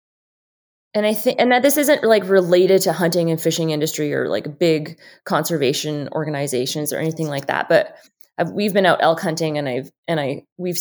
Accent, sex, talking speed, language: American, female, 190 wpm, English